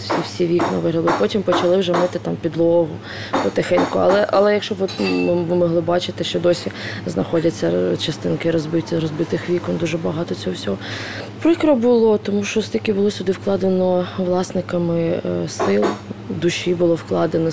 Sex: female